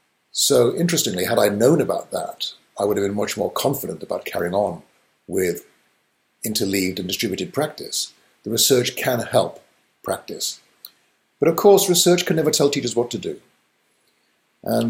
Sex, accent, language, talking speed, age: male, British, English, 155 wpm, 50-69